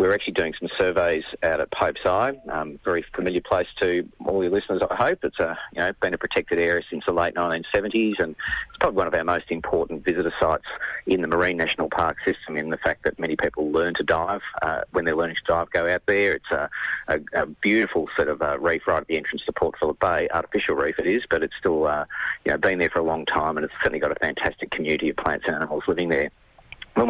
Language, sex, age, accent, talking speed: English, male, 30-49, Australian, 250 wpm